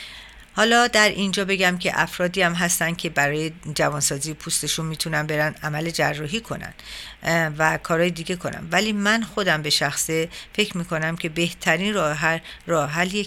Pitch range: 160-195 Hz